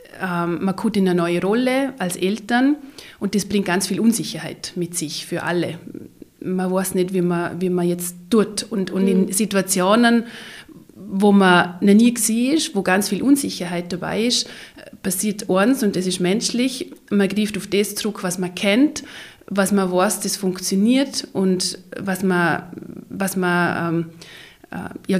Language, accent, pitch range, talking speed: German, German, 180-215 Hz, 160 wpm